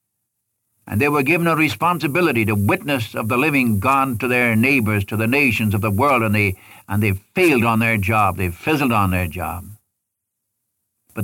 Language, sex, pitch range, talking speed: English, male, 105-125 Hz, 180 wpm